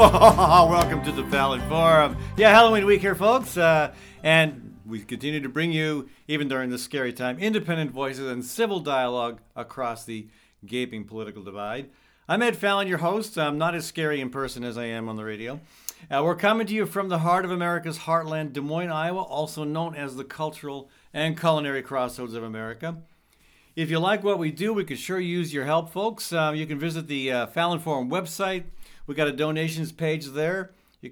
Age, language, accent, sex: 50-69, English, American, male